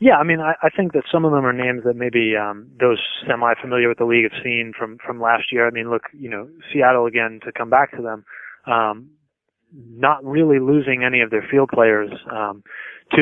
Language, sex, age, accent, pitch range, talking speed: English, male, 20-39, American, 110-130 Hz, 220 wpm